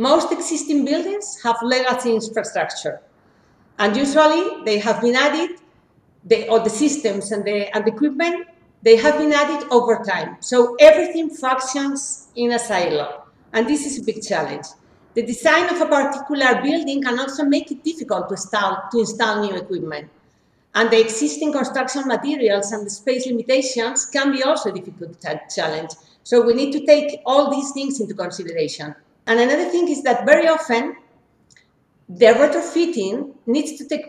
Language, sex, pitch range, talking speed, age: English, female, 220-295 Hz, 160 wpm, 50-69